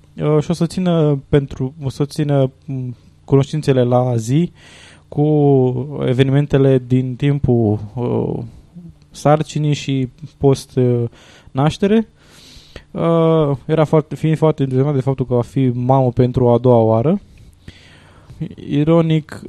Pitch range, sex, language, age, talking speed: 125-160 Hz, male, Romanian, 20-39, 90 wpm